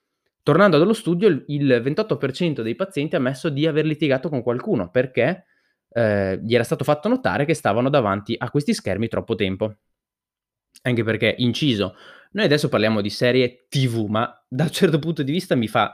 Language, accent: Italian, native